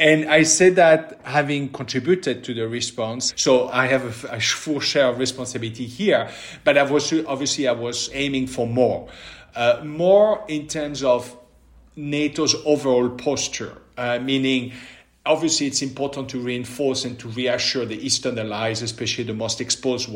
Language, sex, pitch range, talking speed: English, male, 125-150 Hz, 160 wpm